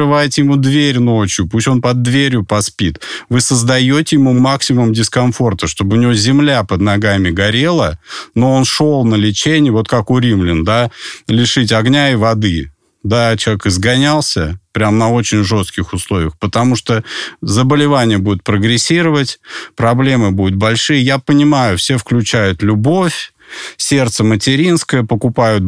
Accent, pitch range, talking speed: native, 110-140 Hz, 140 wpm